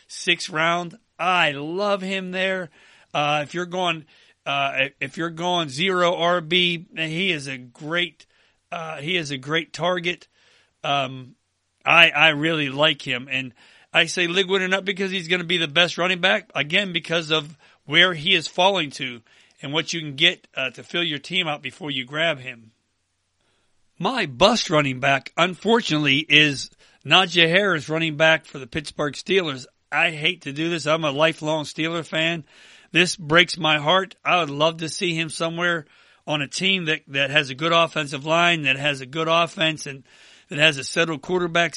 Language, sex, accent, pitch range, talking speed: English, male, American, 140-175 Hz, 180 wpm